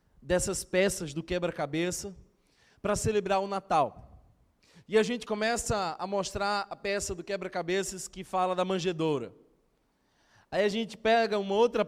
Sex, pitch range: male, 180-210 Hz